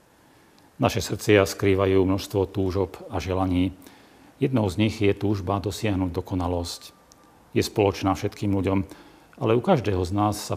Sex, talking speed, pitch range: male, 135 wpm, 95-105 Hz